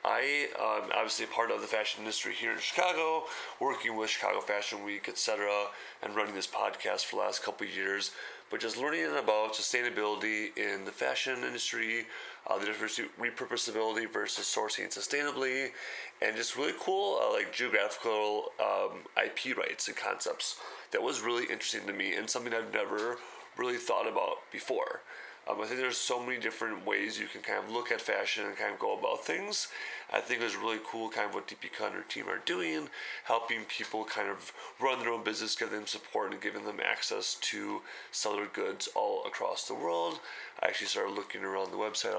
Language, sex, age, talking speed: English, male, 30-49, 195 wpm